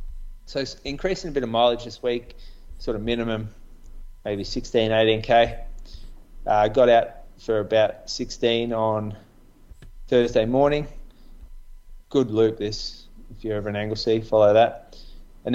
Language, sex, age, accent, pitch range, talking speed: English, male, 20-39, Australian, 105-125 Hz, 130 wpm